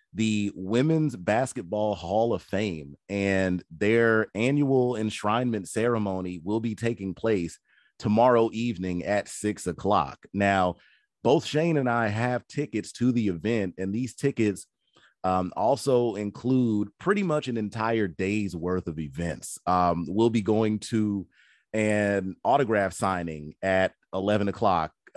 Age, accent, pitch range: 30-49, American, 90-115 Hz